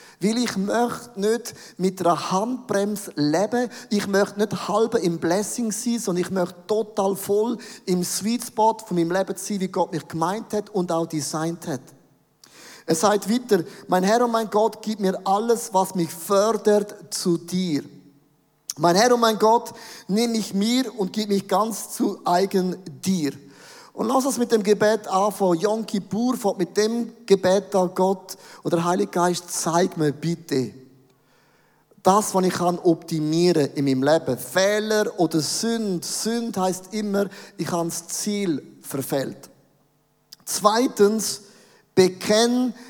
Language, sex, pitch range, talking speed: German, male, 175-215 Hz, 150 wpm